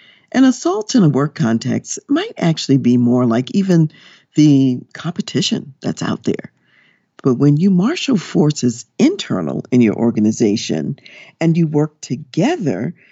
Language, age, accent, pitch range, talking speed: English, 50-69, American, 125-195 Hz, 135 wpm